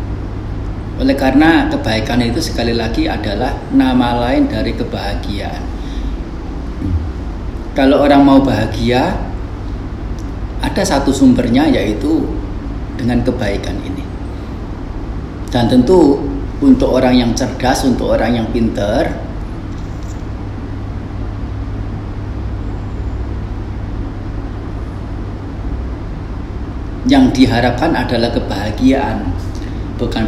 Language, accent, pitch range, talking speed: Indonesian, native, 95-115 Hz, 75 wpm